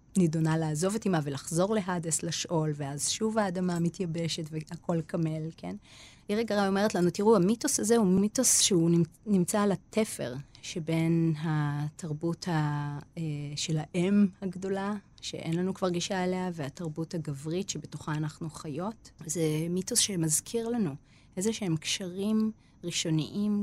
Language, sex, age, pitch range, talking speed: Hebrew, female, 30-49, 155-190 Hz, 130 wpm